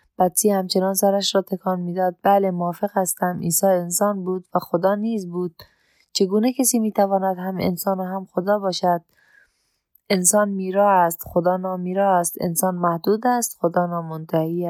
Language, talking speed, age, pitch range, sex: Persian, 140 wpm, 20-39, 180-210 Hz, female